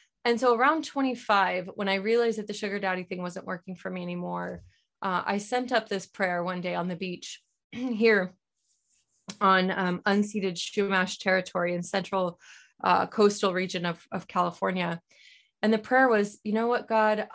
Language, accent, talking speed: English, American, 175 wpm